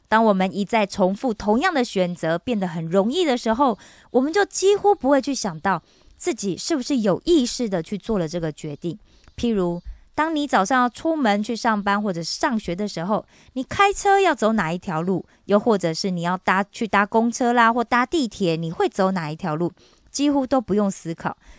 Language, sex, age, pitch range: Korean, female, 20-39, 180-255 Hz